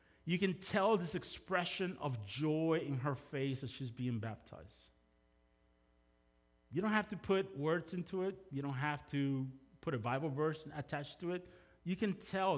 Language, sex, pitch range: English, male, 115-180 Hz